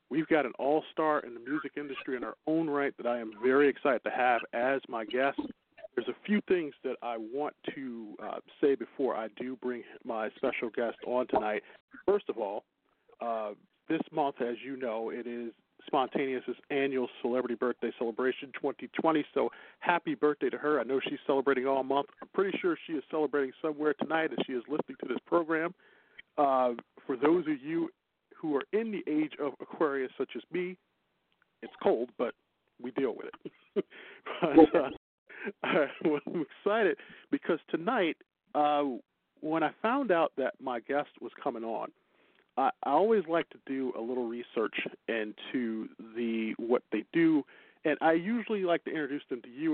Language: English